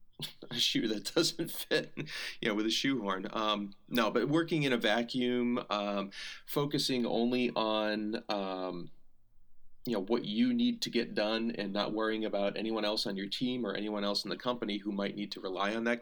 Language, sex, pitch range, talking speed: English, male, 100-120 Hz, 195 wpm